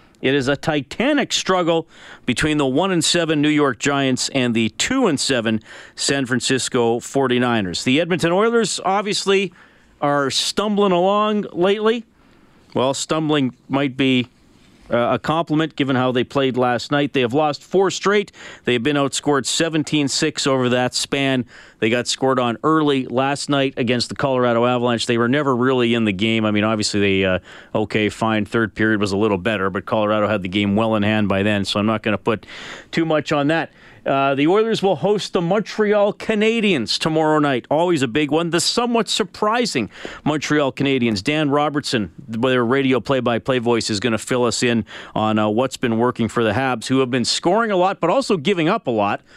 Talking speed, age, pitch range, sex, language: 190 wpm, 40-59, 115-160 Hz, male, English